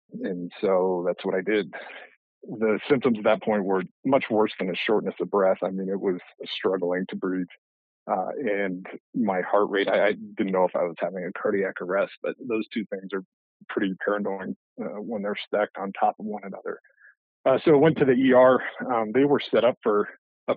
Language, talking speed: English, 210 wpm